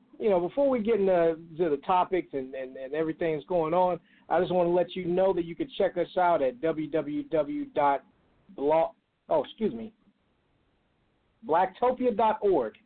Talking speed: 160 wpm